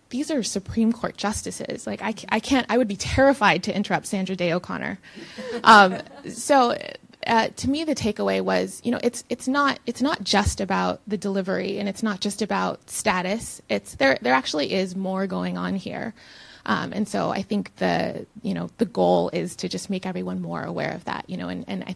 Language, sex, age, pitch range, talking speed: English, female, 20-39, 170-200 Hz, 210 wpm